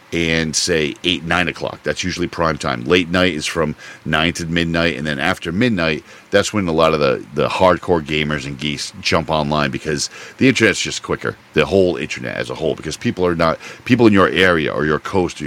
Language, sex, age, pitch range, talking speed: English, male, 50-69, 80-105 Hz, 215 wpm